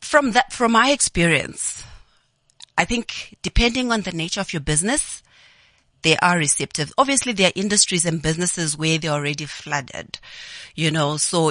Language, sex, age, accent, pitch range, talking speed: English, female, 30-49, South African, 150-180 Hz, 155 wpm